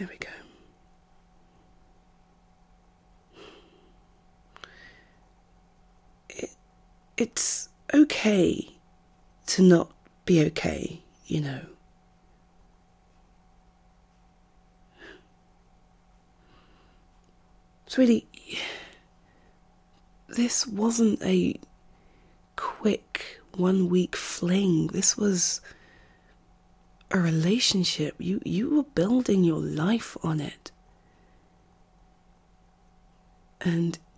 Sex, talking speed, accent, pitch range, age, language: female, 55 wpm, British, 165-205 Hz, 30-49, English